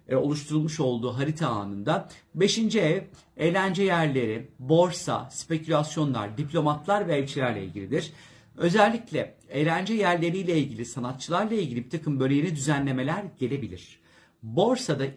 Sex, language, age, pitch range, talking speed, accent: male, Turkish, 50-69, 130-175 Hz, 105 wpm, native